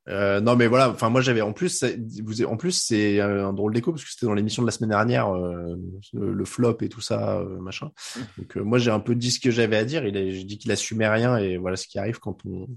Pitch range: 100-120 Hz